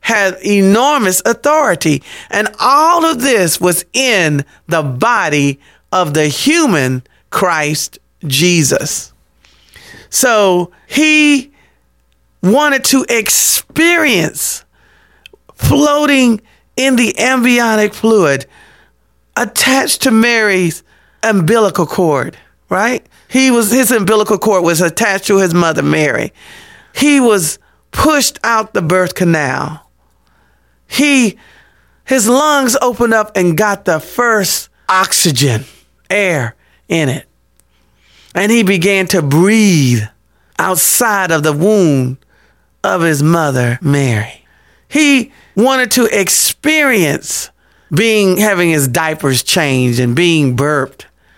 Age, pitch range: 40-59, 145-235 Hz